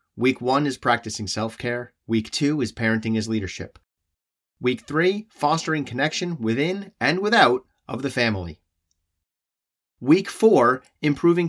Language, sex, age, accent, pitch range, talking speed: English, male, 30-49, American, 110-165 Hz, 125 wpm